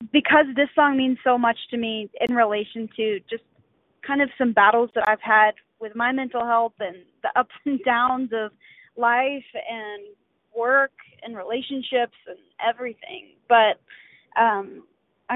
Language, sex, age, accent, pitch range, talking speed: English, female, 20-39, American, 225-265 Hz, 150 wpm